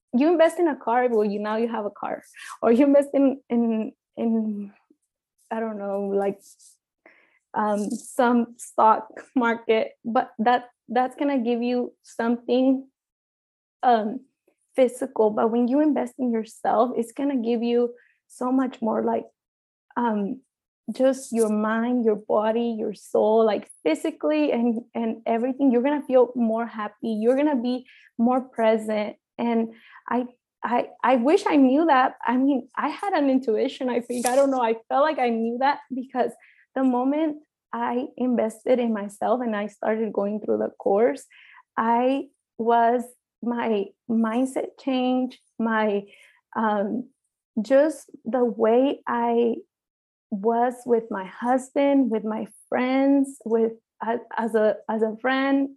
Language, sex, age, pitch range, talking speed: English, female, 20-39, 225-265 Hz, 145 wpm